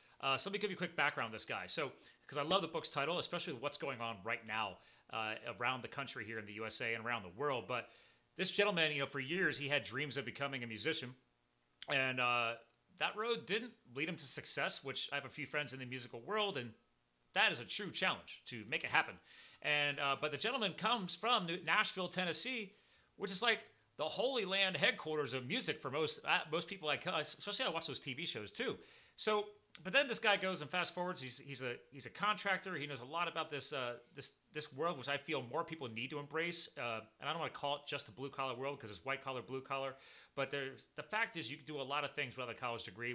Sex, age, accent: male, 30-49, American